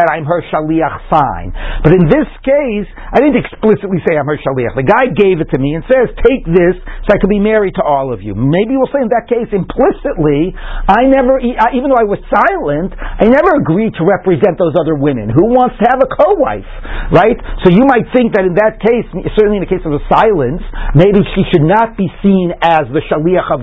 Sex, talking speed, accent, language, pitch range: male, 225 wpm, American, English, 155-220 Hz